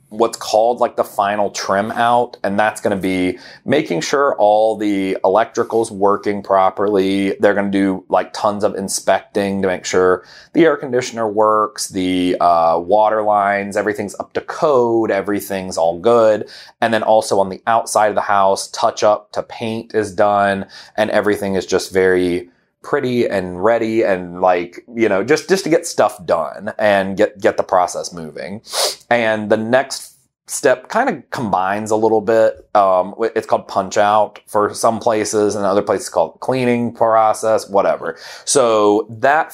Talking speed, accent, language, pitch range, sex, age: 170 wpm, American, English, 95-115 Hz, male, 30-49